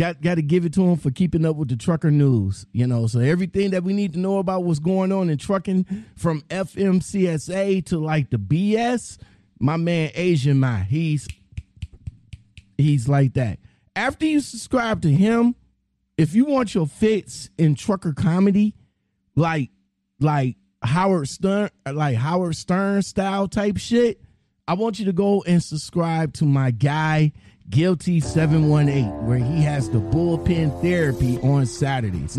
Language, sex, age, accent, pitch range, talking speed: English, male, 30-49, American, 130-185 Hz, 155 wpm